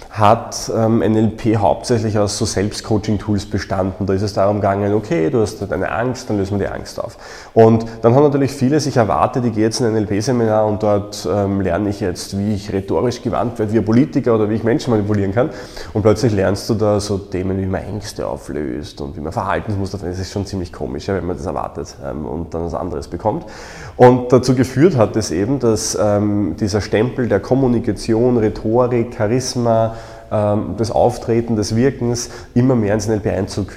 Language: German